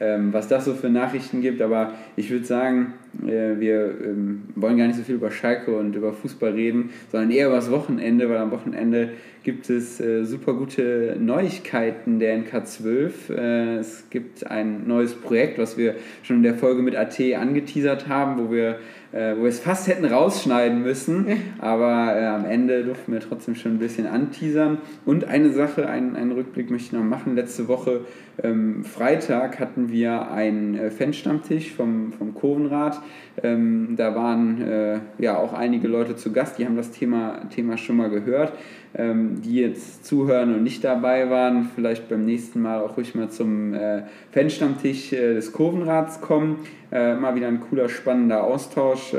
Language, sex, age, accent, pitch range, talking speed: German, male, 20-39, German, 115-130 Hz, 170 wpm